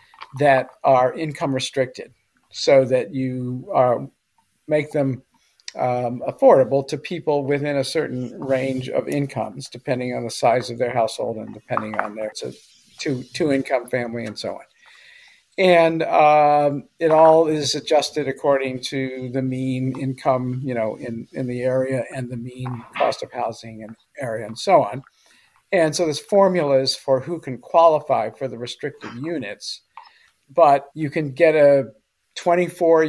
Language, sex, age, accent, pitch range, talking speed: English, male, 50-69, American, 130-150 Hz, 145 wpm